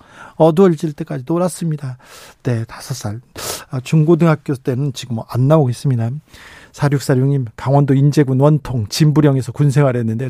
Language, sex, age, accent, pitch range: Korean, male, 40-59, native, 135-180 Hz